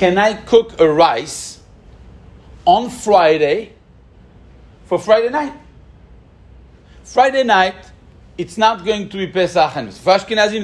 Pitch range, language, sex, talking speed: 180-275 Hz, English, male, 115 wpm